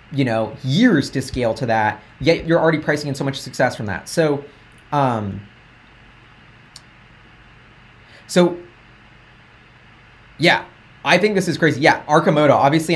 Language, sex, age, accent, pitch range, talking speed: English, male, 30-49, American, 120-165 Hz, 135 wpm